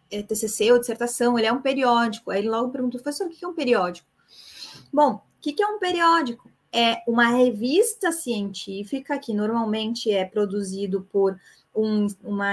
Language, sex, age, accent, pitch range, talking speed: Portuguese, female, 20-39, Brazilian, 205-250 Hz, 170 wpm